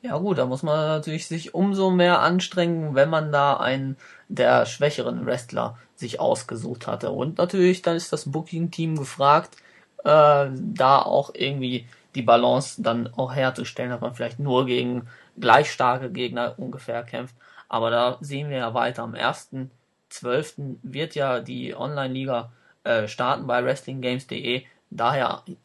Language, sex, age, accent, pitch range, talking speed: German, male, 20-39, German, 125-145 Hz, 145 wpm